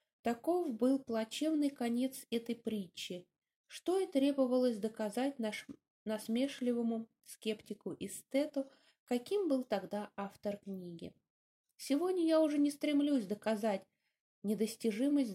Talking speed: 95 wpm